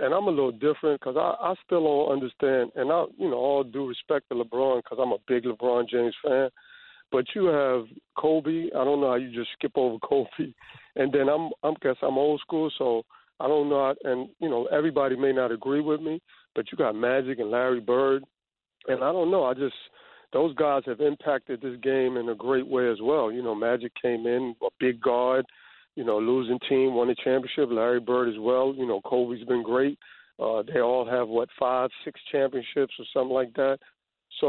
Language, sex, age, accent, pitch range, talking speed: English, male, 50-69, American, 125-145 Hz, 215 wpm